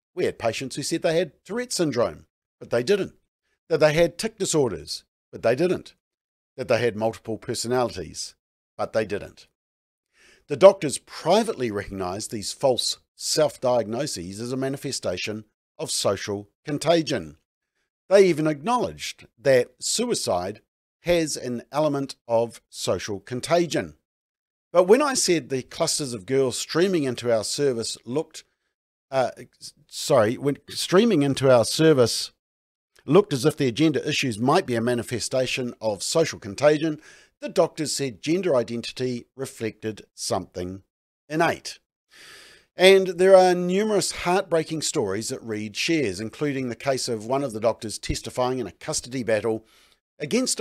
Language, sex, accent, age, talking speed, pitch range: English, male, Australian, 50-69, 140 wpm, 115-160 Hz